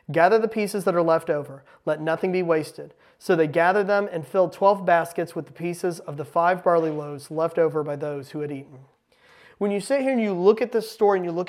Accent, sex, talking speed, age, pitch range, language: American, male, 245 wpm, 30-49, 175-215 Hz, English